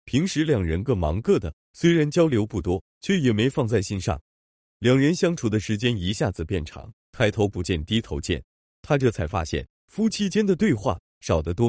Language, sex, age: Chinese, male, 30-49